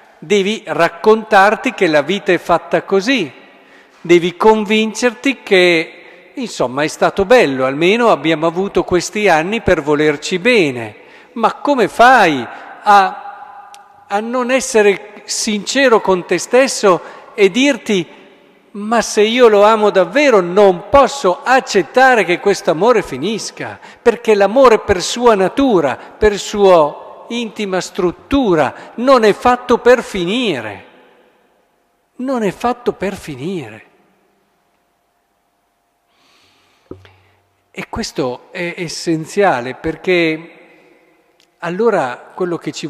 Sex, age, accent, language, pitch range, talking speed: male, 50-69, native, Italian, 170-220 Hz, 110 wpm